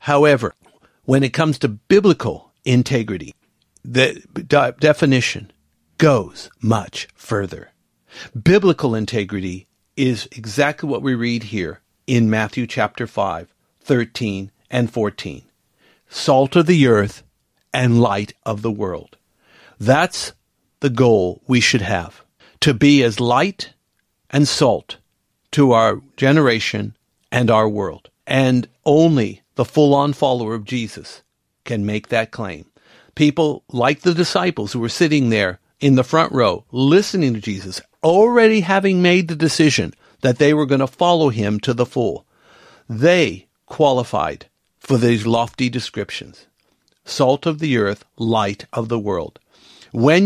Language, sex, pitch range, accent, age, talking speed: English, male, 110-150 Hz, American, 60-79, 130 wpm